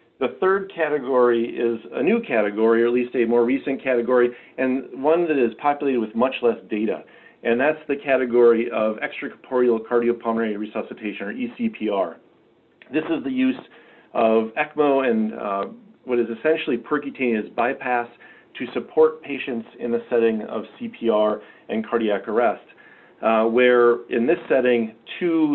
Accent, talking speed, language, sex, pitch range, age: American, 150 wpm, English, male, 115-135 Hz, 40-59